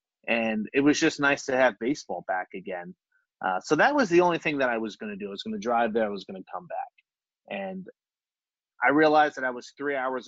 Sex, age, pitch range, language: male, 30-49, 110-150 Hz, English